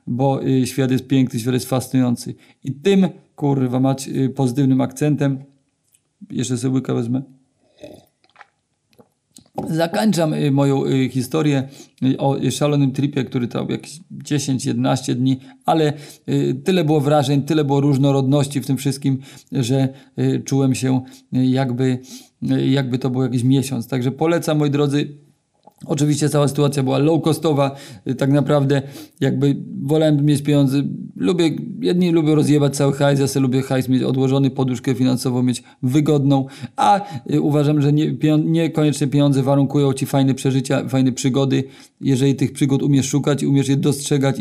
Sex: male